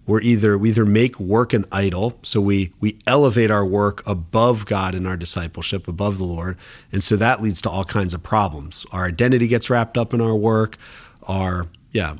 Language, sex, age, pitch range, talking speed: English, male, 40-59, 100-120 Hz, 200 wpm